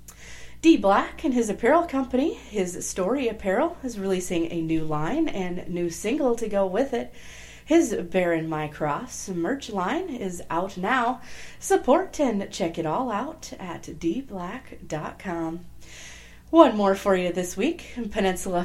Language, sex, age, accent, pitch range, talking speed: English, female, 30-49, American, 165-245 Hz, 145 wpm